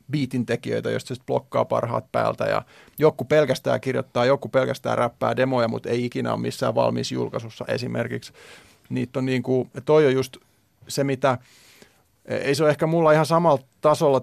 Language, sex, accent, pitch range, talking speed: Finnish, male, native, 125-140 Hz, 165 wpm